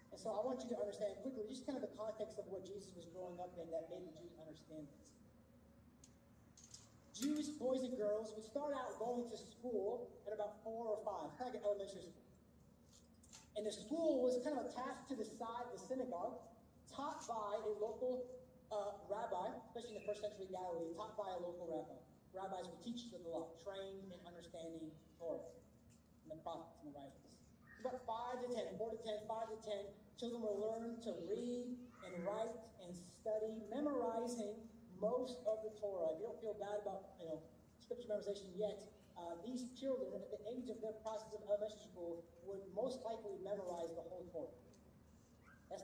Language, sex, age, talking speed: English, male, 30-49, 190 wpm